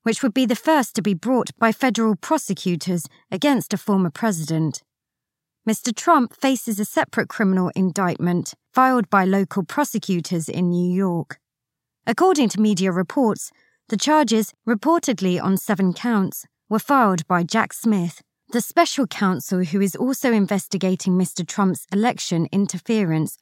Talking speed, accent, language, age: 140 wpm, British, English, 20-39